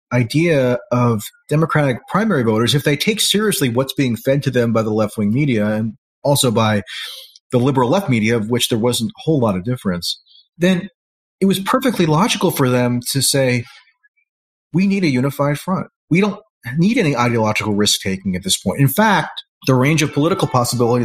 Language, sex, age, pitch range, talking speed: English, male, 30-49, 115-155 Hz, 180 wpm